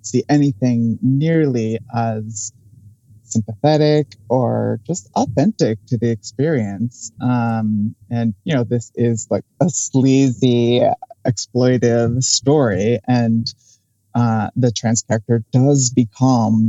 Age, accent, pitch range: 30-49, American, 115-135 Hz